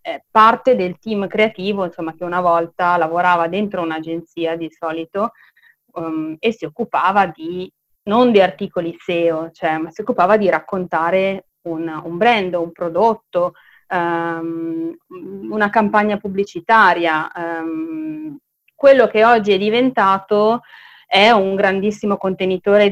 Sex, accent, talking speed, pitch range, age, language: female, native, 125 wpm, 170-215 Hz, 30-49, Italian